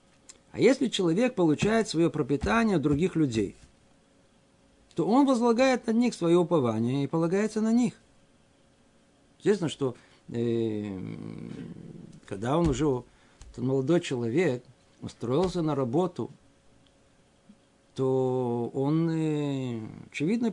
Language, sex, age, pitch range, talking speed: Russian, male, 50-69, 125-185 Hz, 105 wpm